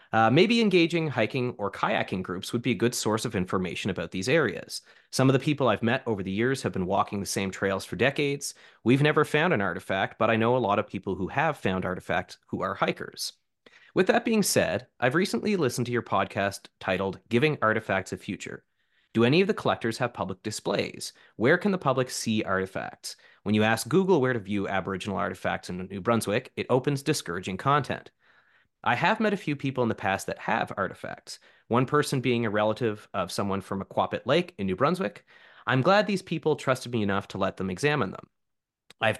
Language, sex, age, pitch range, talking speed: English, male, 30-49, 100-140 Hz, 210 wpm